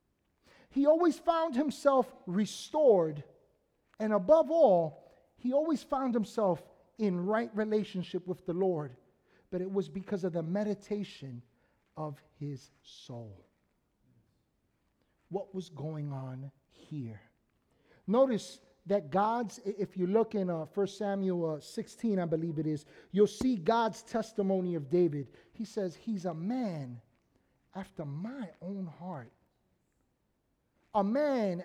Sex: male